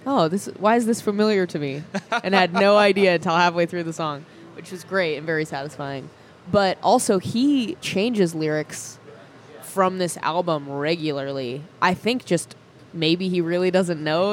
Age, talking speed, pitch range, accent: 20-39, 170 wpm, 140-175 Hz, American